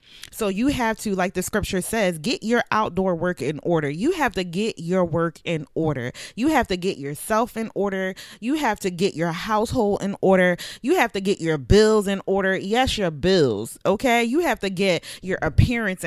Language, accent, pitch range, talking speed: English, American, 180-235 Hz, 205 wpm